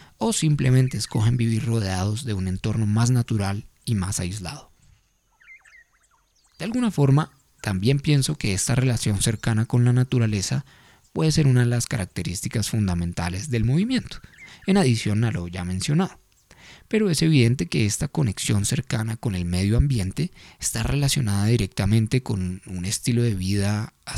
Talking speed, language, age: 150 wpm, Spanish, 20-39